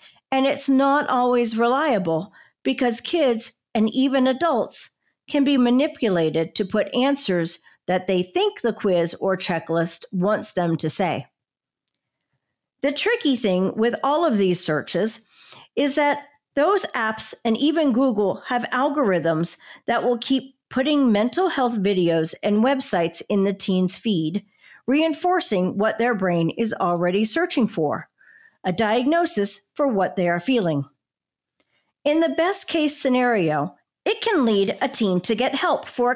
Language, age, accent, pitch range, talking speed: English, 50-69, American, 180-275 Hz, 145 wpm